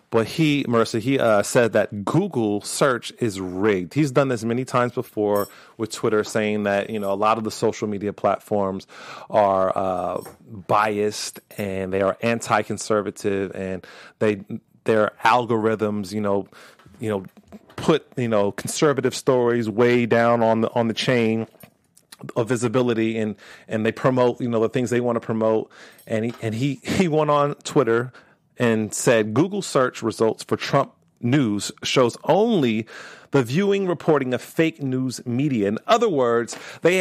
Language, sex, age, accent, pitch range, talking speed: English, male, 30-49, American, 105-135 Hz, 160 wpm